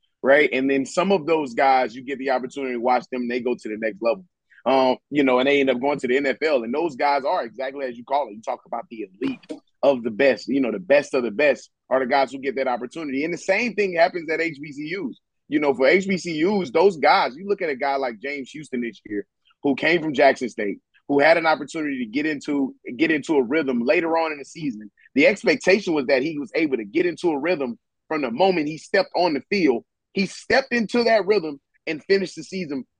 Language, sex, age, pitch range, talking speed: English, male, 30-49, 135-185 Hz, 245 wpm